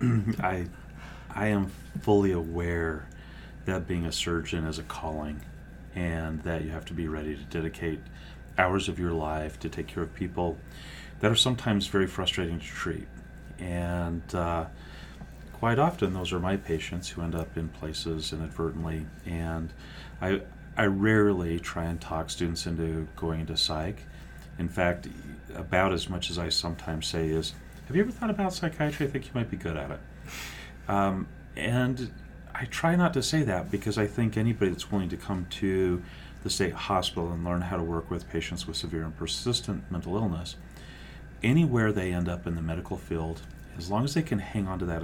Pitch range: 80-100 Hz